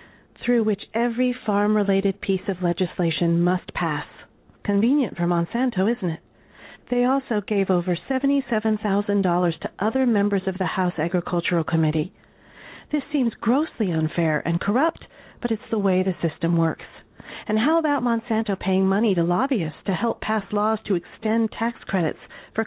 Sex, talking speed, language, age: female, 150 wpm, English, 40-59